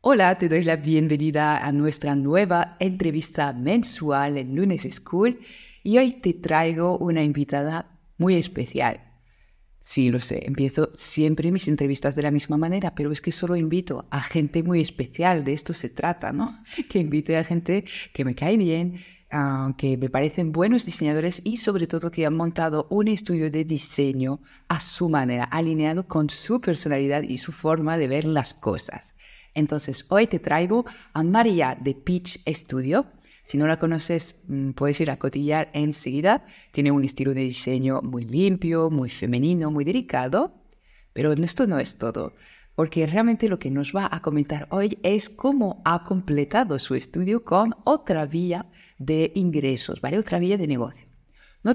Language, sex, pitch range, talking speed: Spanish, female, 140-180 Hz, 165 wpm